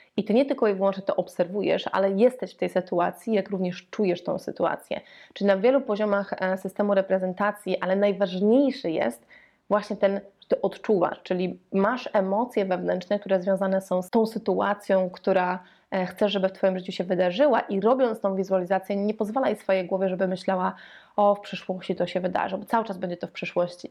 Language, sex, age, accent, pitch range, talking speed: Polish, female, 20-39, native, 190-215 Hz, 185 wpm